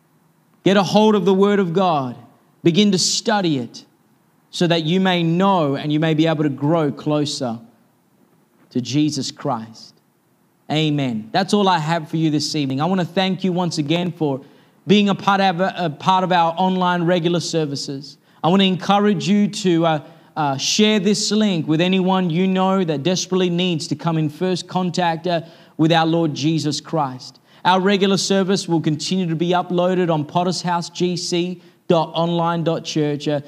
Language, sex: English, male